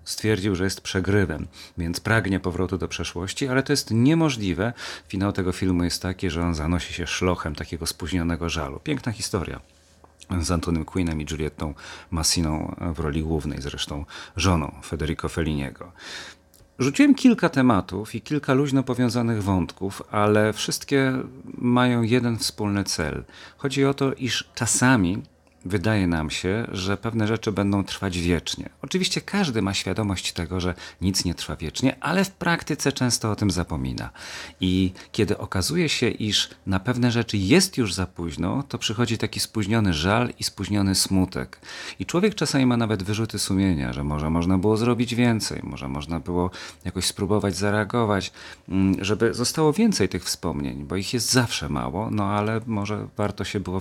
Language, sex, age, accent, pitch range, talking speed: Polish, male, 40-59, native, 85-115 Hz, 155 wpm